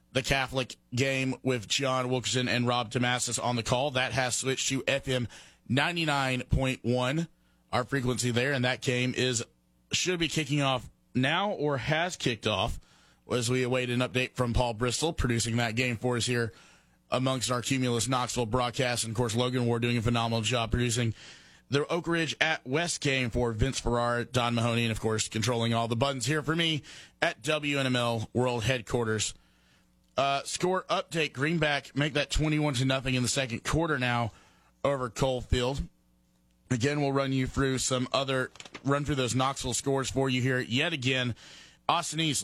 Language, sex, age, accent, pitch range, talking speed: English, male, 30-49, American, 120-140 Hz, 180 wpm